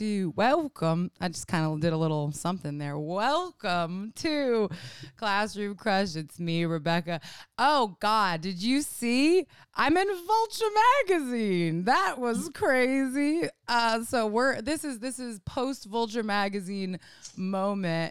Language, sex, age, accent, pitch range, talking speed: English, female, 20-39, American, 175-235 Hz, 135 wpm